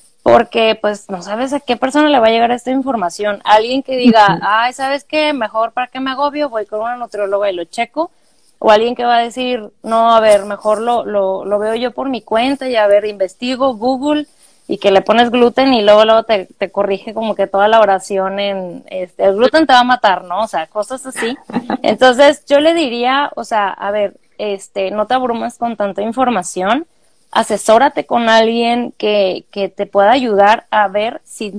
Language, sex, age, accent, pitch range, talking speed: Spanish, female, 20-39, Mexican, 205-250 Hz, 205 wpm